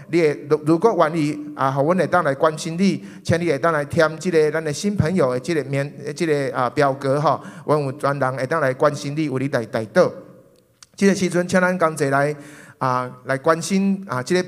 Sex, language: male, Chinese